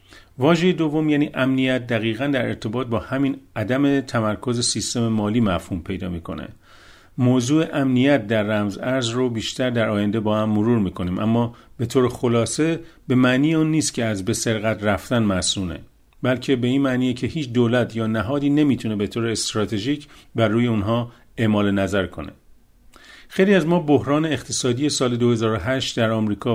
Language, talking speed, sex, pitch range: Persian, 160 wpm, male, 110-135 Hz